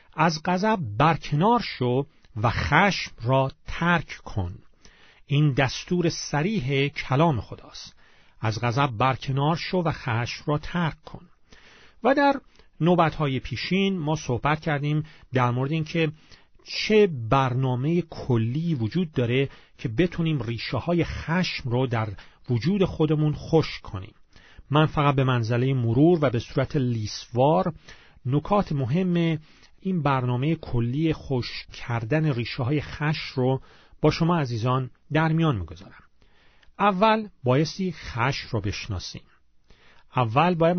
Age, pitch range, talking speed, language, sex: 40-59, 120-170 Hz, 120 wpm, Persian, male